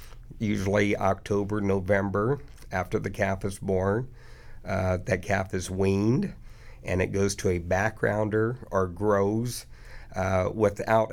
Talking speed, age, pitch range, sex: 125 wpm, 50-69, 95-110 Hz, male